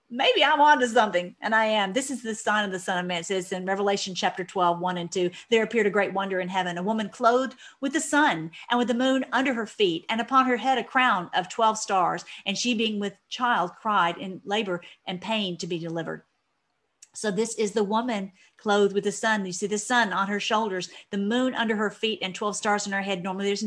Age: 50-69